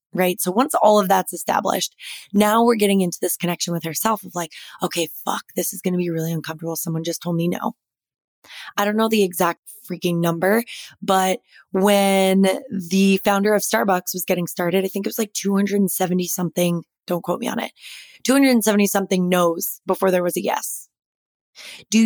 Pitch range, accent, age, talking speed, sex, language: 180-215 Hz, American, 20-39, 185 wpm, female, English